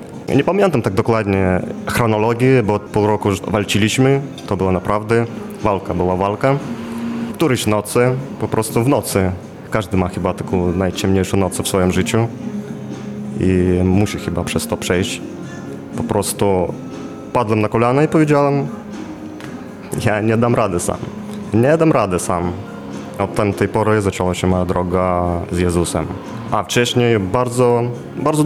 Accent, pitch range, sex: native, 95-120 Hz, male